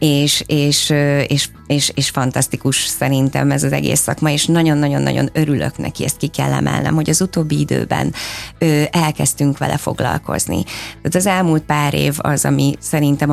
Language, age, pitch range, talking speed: Hungarian, 30-49, 130-155 Hz, 155 wpm